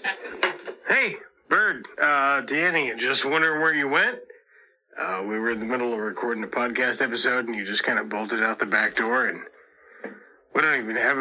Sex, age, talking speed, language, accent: male, 30-49, 185 wpm, English, American